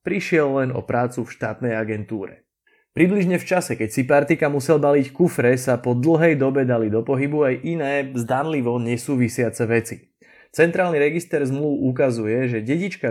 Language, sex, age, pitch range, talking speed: Slovak, male, 20-39, 120-160 Hz, 155 wpm